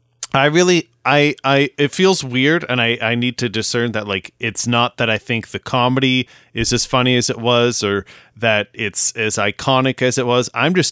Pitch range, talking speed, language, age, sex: 110-135 Hz, 210 wpm, English, 30-49, male